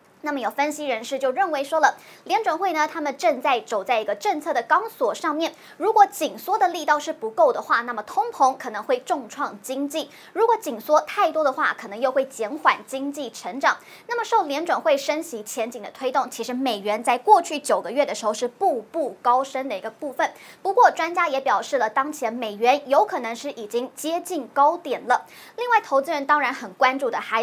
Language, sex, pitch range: Chinese, male, 255-335 Hz